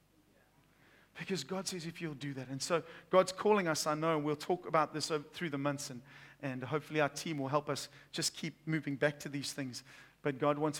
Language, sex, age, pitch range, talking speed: English, male, 40-59, 135-170 Hz, 215 wpm